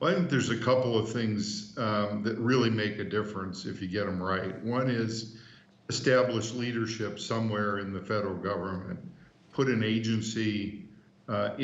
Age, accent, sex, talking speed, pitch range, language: 50-69, American, male, 160 wpm, 100-120 Hz, English